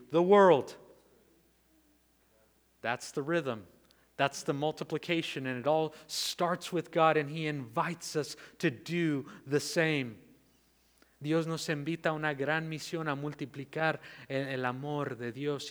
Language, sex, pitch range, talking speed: English, male, 125-160 Hz, 135 wpm